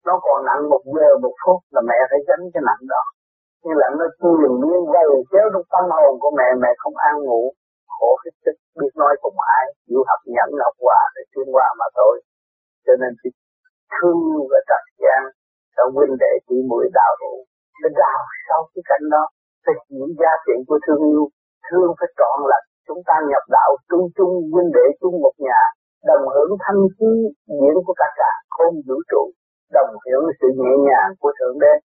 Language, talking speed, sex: Vietnamese, 205 wpm, male